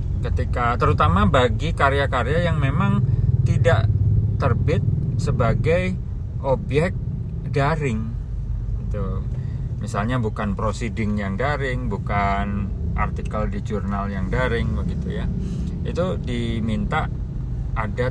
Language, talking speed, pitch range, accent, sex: Indonesian, 95 wpm, 95-120 Hz, native, male